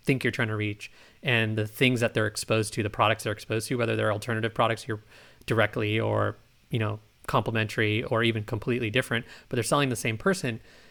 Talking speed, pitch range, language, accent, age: 205 wpm, 115-135 Hz, English, American, 30-49